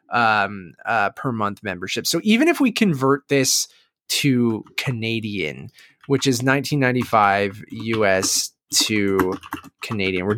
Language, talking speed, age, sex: English, 115 wpm, 20-39, male